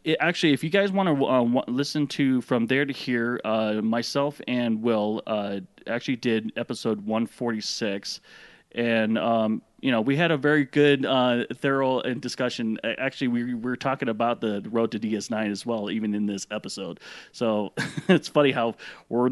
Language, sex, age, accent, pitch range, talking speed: English, male, 30-49, American, 110-130 Hz, 170 wpm